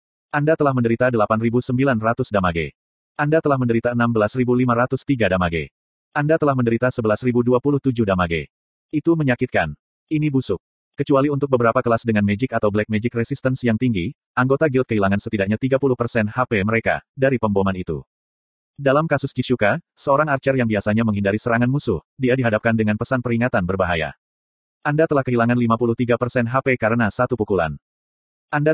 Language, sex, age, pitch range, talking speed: Indonesian, male, 30-49, 110-135 Hz, 140 wpm